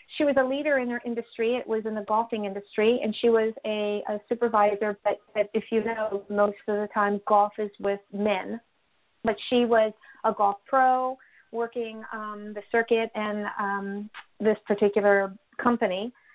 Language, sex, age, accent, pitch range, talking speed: English, female, 40-59, American, 215-255 Hz, 170 wpm